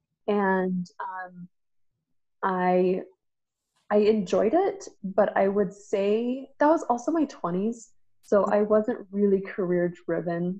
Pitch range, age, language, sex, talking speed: 180-225 Hz, 20-39, English, female, 115 wpm